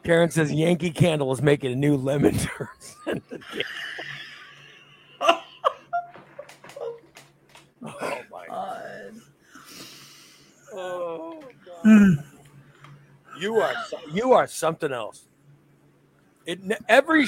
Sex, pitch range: male, 150-250 Hz